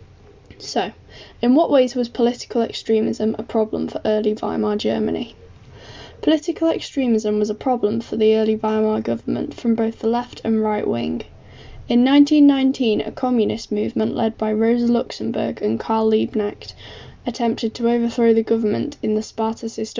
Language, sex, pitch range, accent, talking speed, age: English, female, 210-235 Hz, British, 150 wpm, 10-29